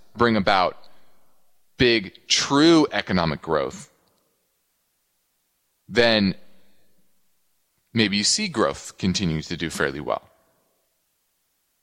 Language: English